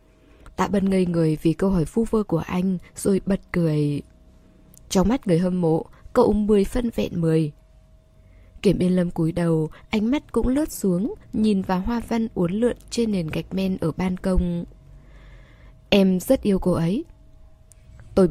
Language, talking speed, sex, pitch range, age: Vietnamese, 175 wpm, female, 165-220 Hz, 10-29